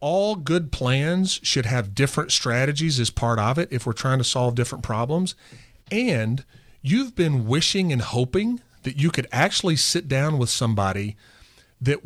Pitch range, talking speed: 120-175 Hz, 165 wpm